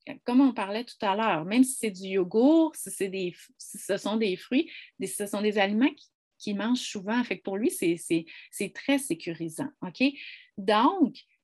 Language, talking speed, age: French, 205 wpm, 30-49